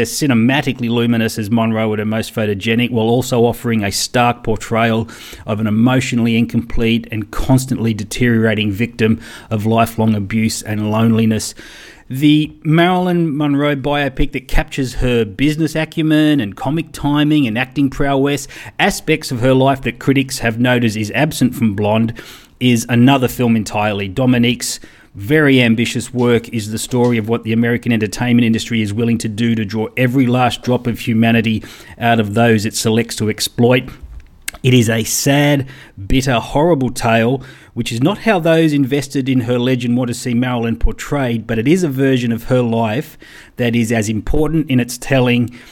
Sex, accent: male, Australian